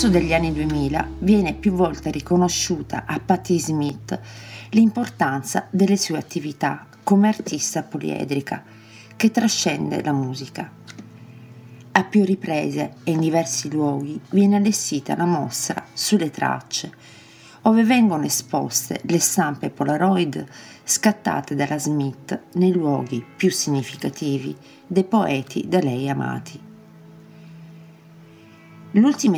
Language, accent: English, Italian